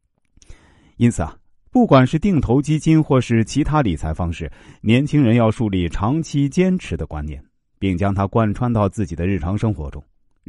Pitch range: 90-140 Hz